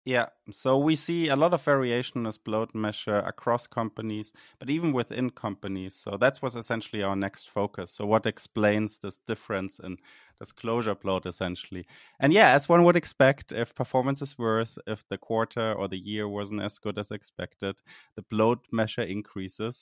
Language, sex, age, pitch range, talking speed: English, male, 30-49, 95-115 Hz, 180 wpm